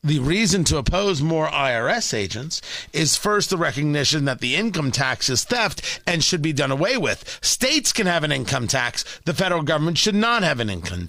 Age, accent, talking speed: 40-59, American, 200 wpm